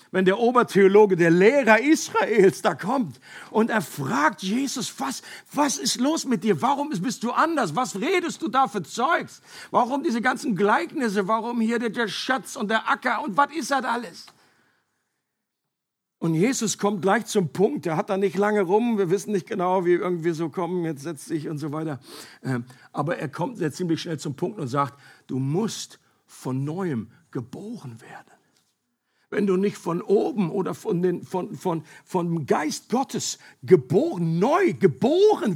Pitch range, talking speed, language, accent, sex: 175-230 Hz, 170 wpm, German, German, male